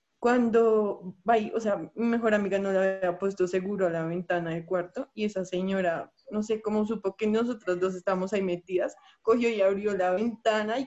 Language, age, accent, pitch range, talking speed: Spanish, 20-39, Colombian, 195-255 Hz, 200 wpm